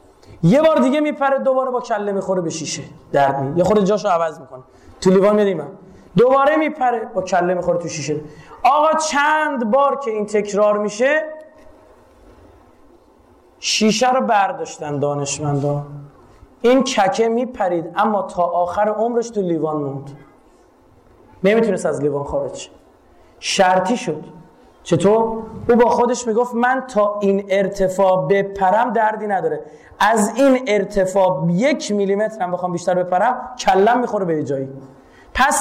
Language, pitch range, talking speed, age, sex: Persian, 175-250 Hz, 135 wpm, 30-49, male